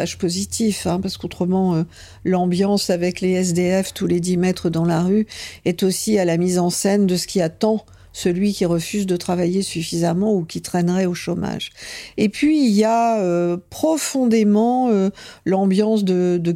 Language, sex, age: French, female, 50-69